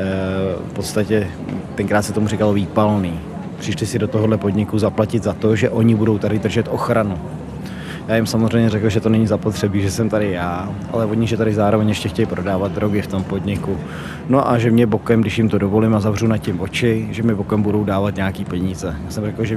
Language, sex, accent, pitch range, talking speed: Czech, male, native, 100-115 Hz, 215 wpm